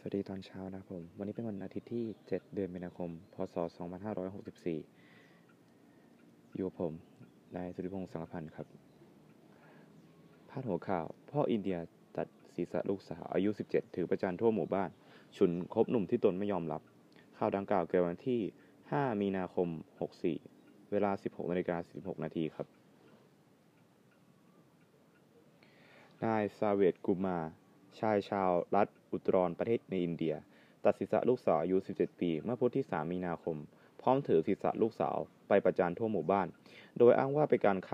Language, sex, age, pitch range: Thai, male, 20-39, 85-105 Hz